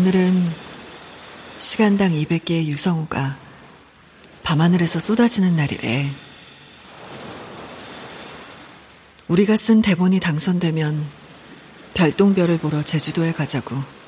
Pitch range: 155-195 Hz